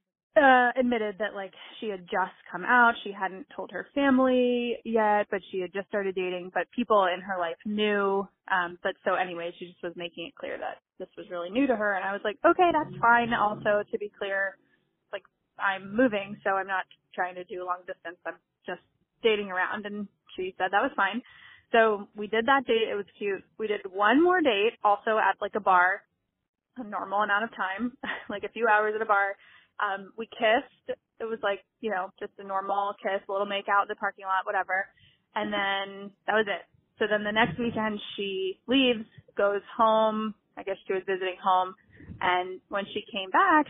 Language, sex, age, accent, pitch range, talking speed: English, female, 20-39, American, 195-230 Hz, 205 wpm